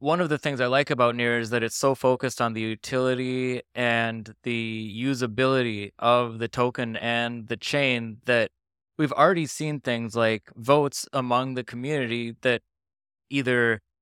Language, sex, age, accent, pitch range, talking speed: English, male, 20-39, American, 115-135 Hz, 160 wpm